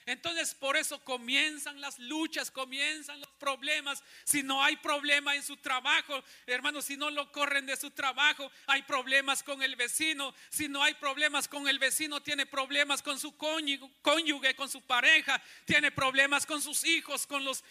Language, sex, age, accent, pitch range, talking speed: Spanish, male, 40-59, Mexican, 265-310 Hz, 175 wpm